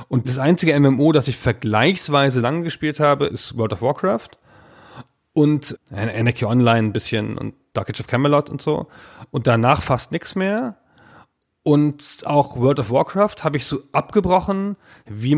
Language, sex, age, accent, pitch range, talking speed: German, male, 40-59, German, 115-155 Hz, 165 wpm